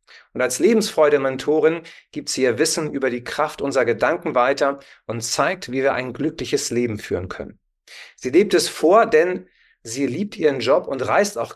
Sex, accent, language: male, German, German